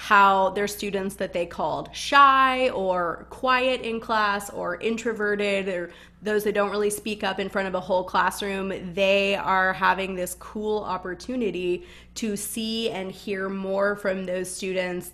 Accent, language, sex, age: American, English, female, 20-39